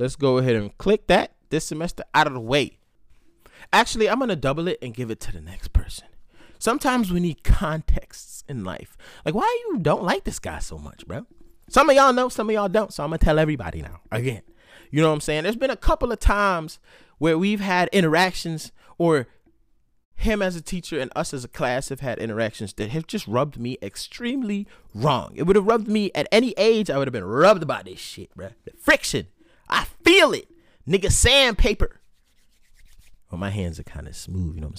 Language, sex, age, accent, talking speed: English, male, 30-49, American, 220 wpm